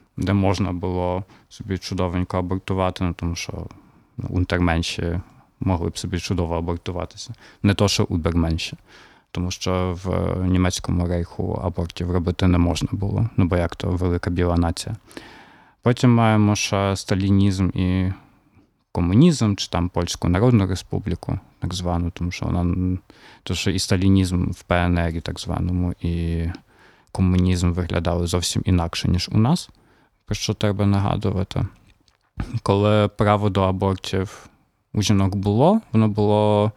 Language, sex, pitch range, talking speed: Ukrainian, male, 90-105 Hz, 130 wpm